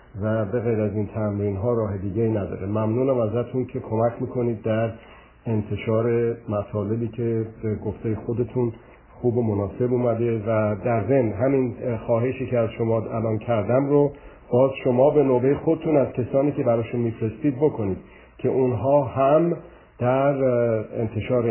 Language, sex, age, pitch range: Persian, male, 50-69, 110-125 Hz